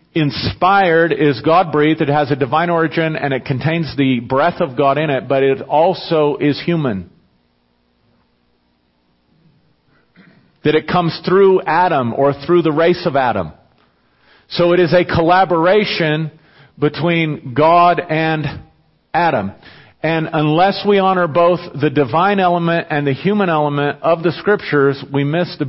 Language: English